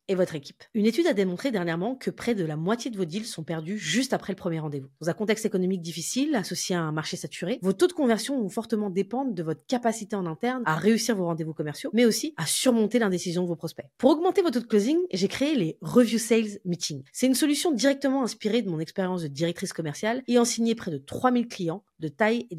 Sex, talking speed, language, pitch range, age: female, 240 wpm, French, 175-240 Hz, 30-49